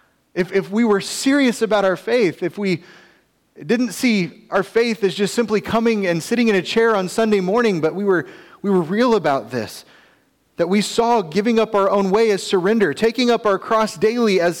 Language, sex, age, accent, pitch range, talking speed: English, male, 30-49, American, 125-215 Hz, 205 wpm